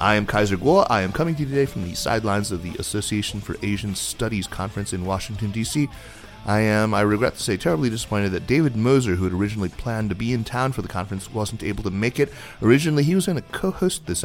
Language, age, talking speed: English, 30-49, 240 wpm